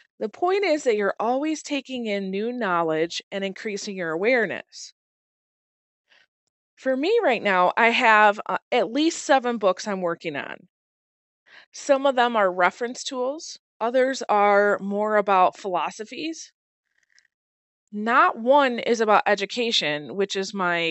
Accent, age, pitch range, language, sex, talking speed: American, 20-39, 195-270 Hz, English, female, 130 wpm